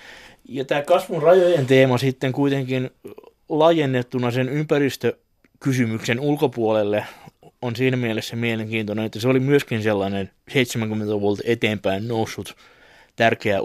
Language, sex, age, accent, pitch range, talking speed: Finnish, male, 20-39, native, 110-135 Hz, 110 wpm